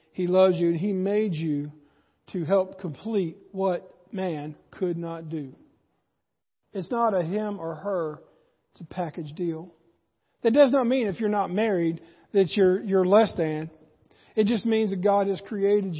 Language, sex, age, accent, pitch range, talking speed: English, male, 40-59, American, 175-220 Hz, 170 wpm